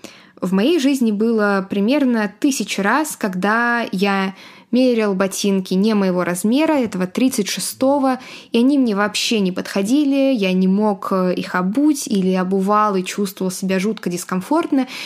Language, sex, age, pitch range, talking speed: Russian, female, 20-39, 195-245 Hz, 135 wpm